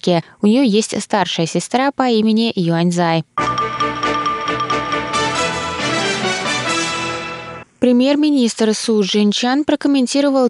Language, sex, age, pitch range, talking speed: Russian, female, 20-39, 180-230 Hz, 75 wpm